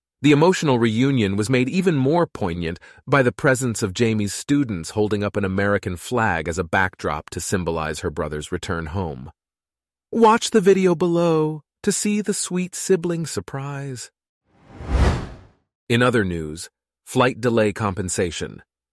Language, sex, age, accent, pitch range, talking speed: English, male, 40-59, American, 95-125 Hz, 140 wpm